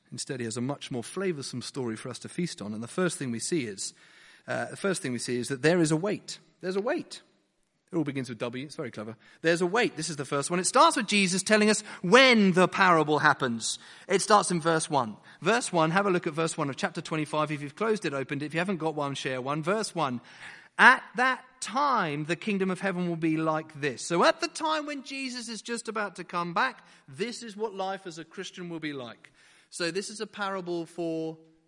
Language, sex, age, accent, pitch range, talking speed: English, male, 40-59, British, 150-205 Hz, 250 wpm